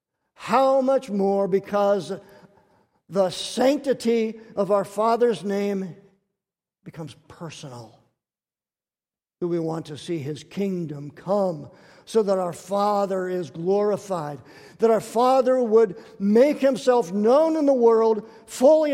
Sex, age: male, 50-69